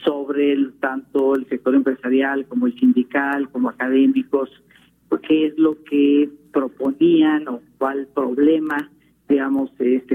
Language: Spanish